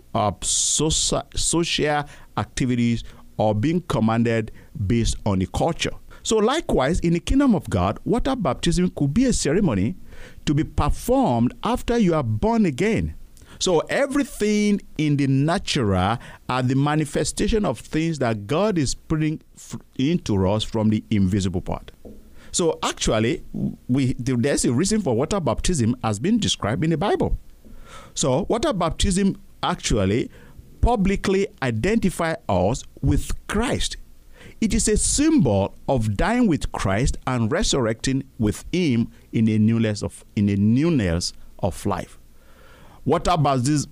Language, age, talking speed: English, 50-69, 135 wpm